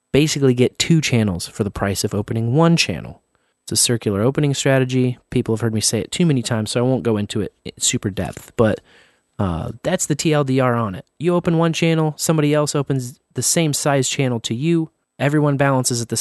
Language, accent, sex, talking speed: English, American, male, 215 wpm